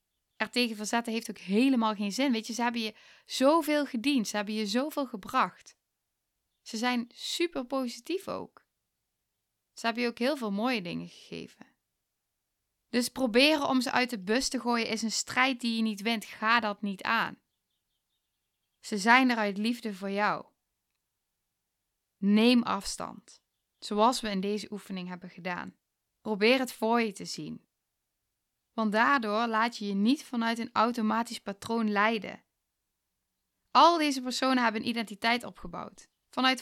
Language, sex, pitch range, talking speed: Dutch, female, 215-255 Hz, 155 wpm